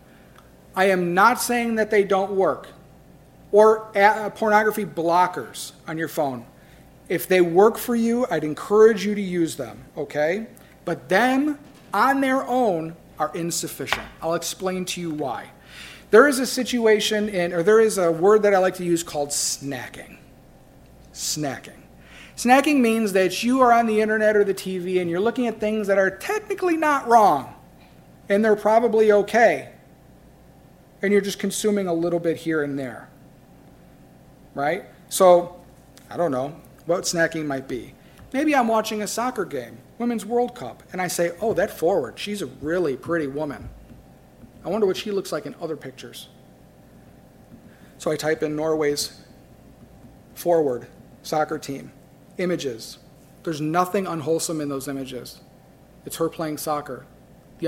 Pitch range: 150-215 Hz